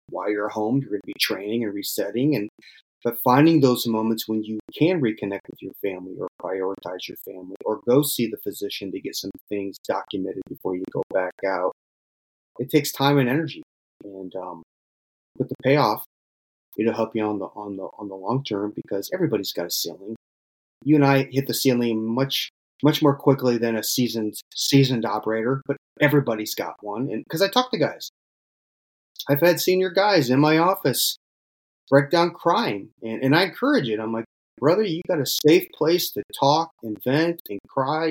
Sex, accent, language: male, American, English